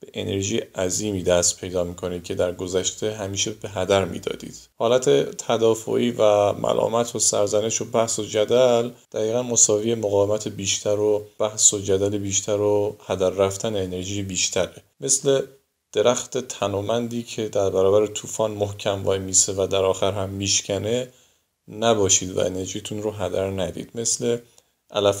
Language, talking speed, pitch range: Persian, 140 wpm, 95-115 Hz